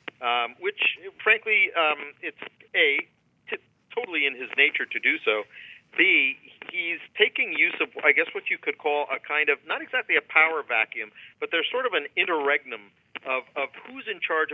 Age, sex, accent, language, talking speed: 50-69, male, American, English, 180 wpm